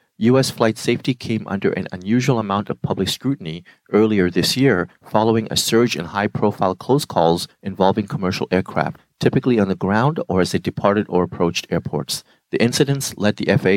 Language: English